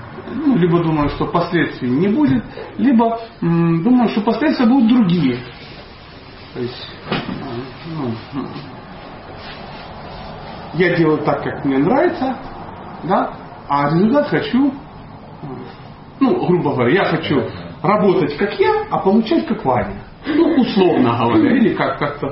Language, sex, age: Russian, male, 40-59